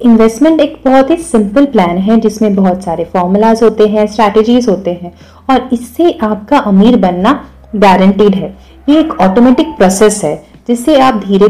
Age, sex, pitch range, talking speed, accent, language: 30-49, female, 190-250 Hz, 160 wpm, native, Hindi